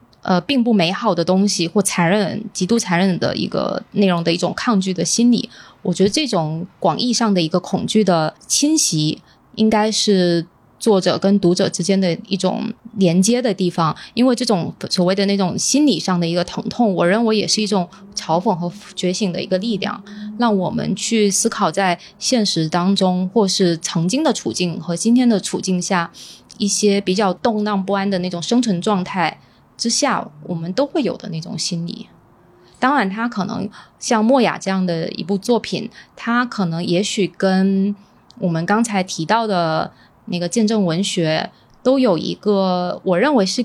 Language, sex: Chinese, female